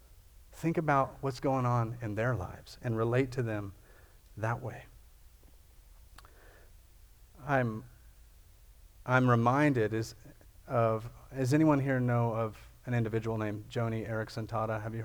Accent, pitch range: American, 105-130 Hz